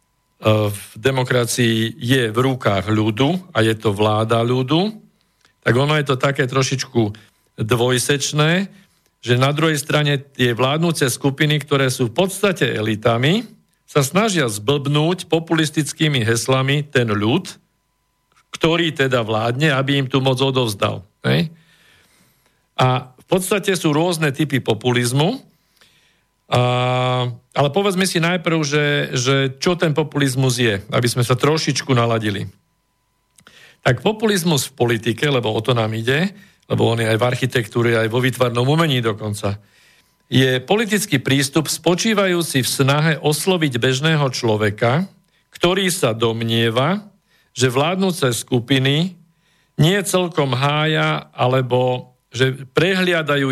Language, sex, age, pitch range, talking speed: Slovak, male, 50-69, 120-160 Hz, 120 wpm